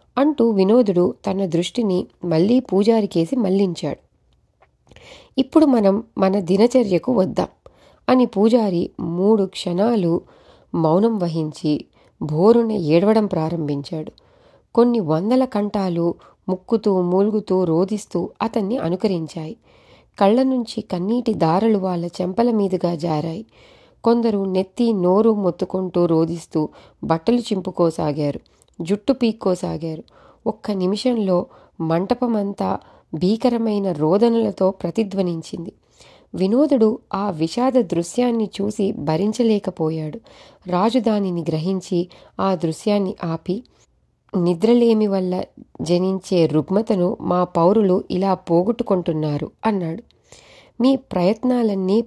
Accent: native